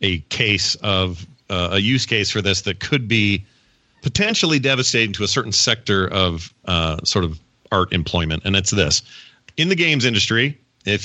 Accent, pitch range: American, 95-120 Hz